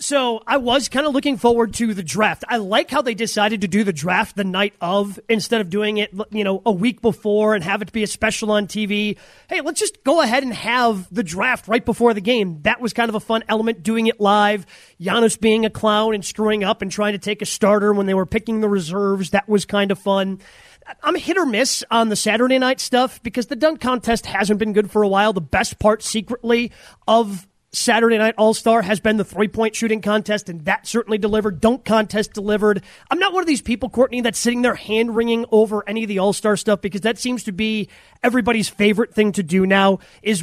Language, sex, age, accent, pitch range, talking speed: English, male, 30-49, American, 205-235 Hz, 230 wpm